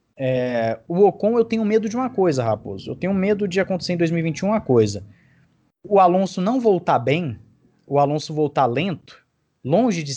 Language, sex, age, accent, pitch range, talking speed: Portuguese, male, 20-39, Brazilian, 125-190 Hz, 175 wpm